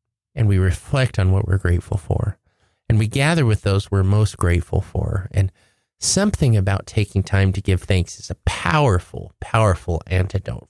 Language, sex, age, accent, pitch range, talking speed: English, male, 30-49, American, 95-115 Hz, 170 wpm